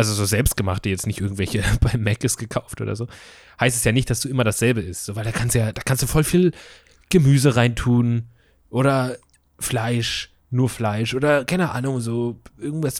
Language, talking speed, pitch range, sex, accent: German, 195 wpm, 100-130 Hz, male, German